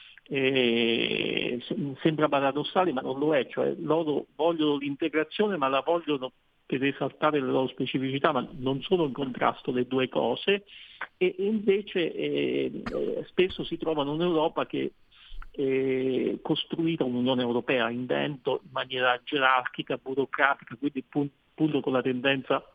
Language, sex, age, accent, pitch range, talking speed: Italian, male, 50-69, native, 130-160 Hz, 135 wpm